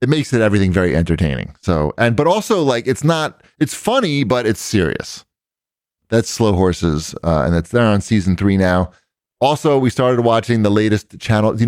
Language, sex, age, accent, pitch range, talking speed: English, male, 30-49, American, 90-115 Hz, 195 wpm